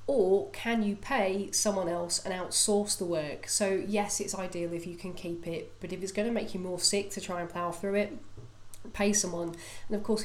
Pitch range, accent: 170-210 Hz, British